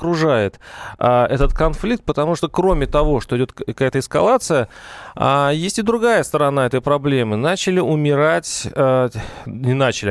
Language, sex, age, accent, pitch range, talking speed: Russian, male, 30-49, native, 130-165 Hz, 140 wpm